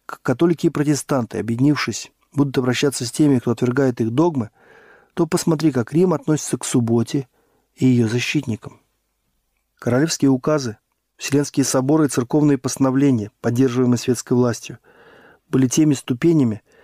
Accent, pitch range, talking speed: native, 125-150 Hz, 125 wpm